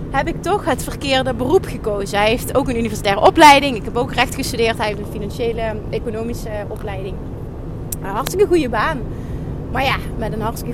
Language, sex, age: Dutch, female, 30-49